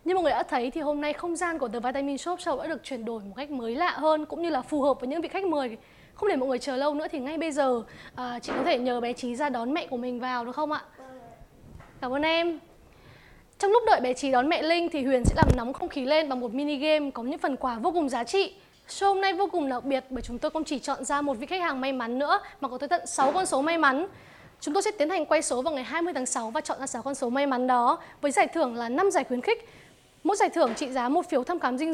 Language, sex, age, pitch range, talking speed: Vietnamese, female, 20-39, 255-325 Hz, 300 wpm